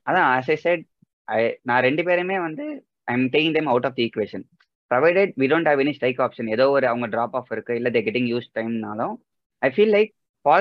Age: 20-39